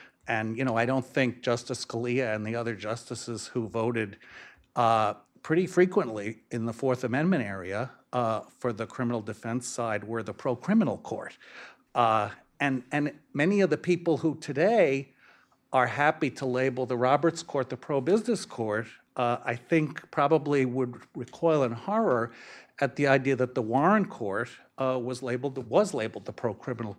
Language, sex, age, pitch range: English, male, 50-69, 120-160 Hz